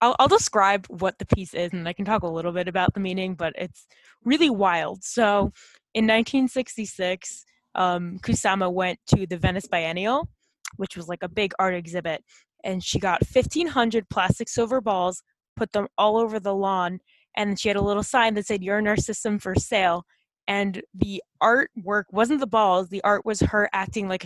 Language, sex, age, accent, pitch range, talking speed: English, female, 20-39, American, 185-220 Hz, 185 wpm